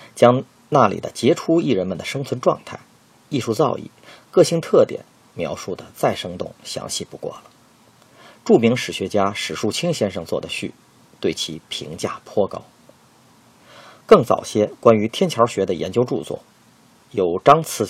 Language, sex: Chinese, male